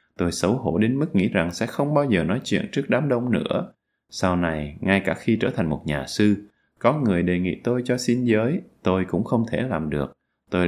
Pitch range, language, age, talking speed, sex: 85-120 Hz, Vietnamese, 20-39, 235 wpm, male